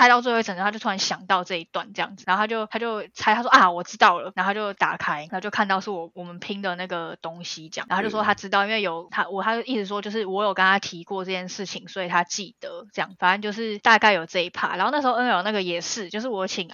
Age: 10-29